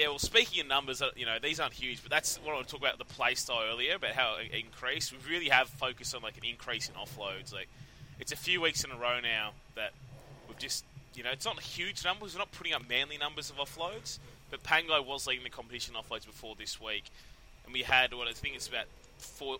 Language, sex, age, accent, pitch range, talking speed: English, male, 20-39, Australian, 115-140 Hz, 255 wpm